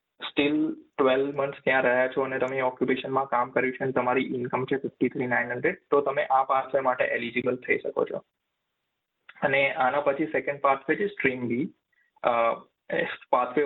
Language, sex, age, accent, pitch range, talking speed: Gujarati, male, 20-39, native, 125-145 Hz, 165 wpm